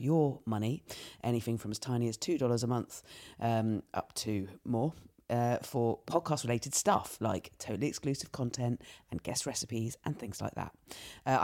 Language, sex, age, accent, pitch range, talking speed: English, female, 40-59, British, 120-150 Hz, 155 wpm